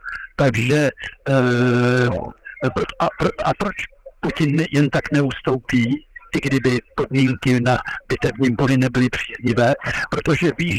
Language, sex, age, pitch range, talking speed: Czech, male, 60-79, 135-155 Hz, 105 wpm